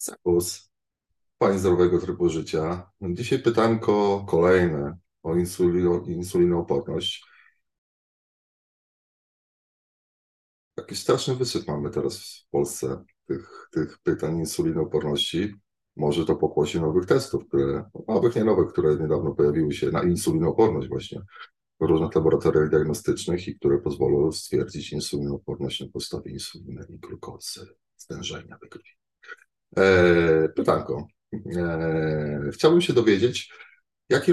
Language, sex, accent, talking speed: Polish, male, native, 100 wpm